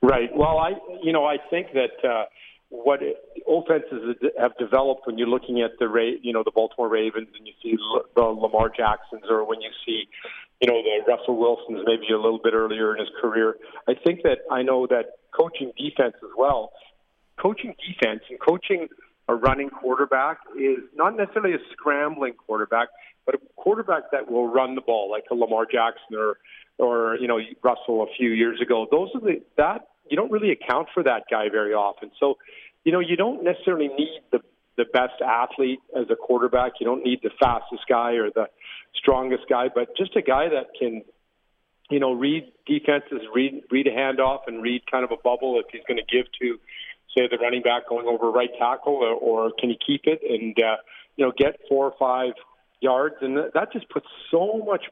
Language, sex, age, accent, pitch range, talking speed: English, male, 40-59, American, 120-165 Hz, 200 wpm